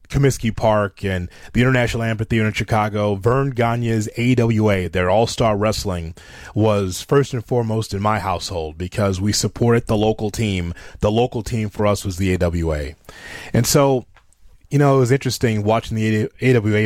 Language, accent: English, American